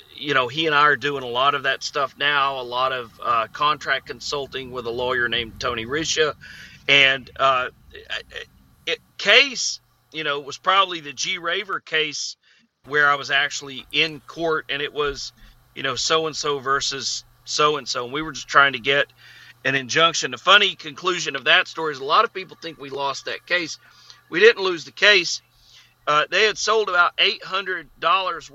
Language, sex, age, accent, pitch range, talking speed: English, male, 40-59, American, 140-200 Hz, 190 wpm